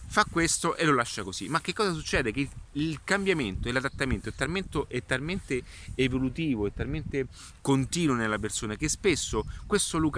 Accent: native